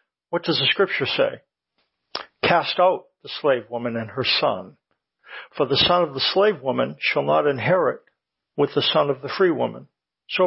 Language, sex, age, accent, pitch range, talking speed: English, male, 60-79, American, 140-175 Hz, 180 wpm